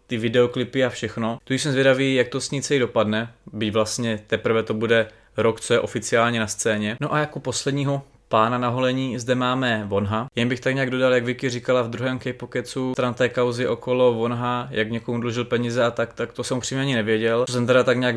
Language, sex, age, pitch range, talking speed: Czech, male, 20-39, 120-130 Hz, 210 wpm